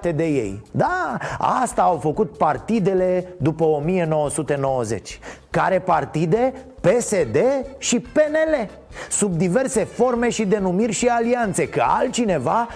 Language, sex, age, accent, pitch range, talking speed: Romanian, male, 30-49, native, 160-225 Hz, 110 wpm